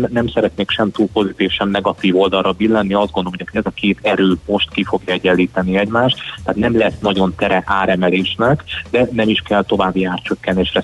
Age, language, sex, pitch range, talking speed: 30-49, Hungarian, male, 95-110 Hz, 185 wpm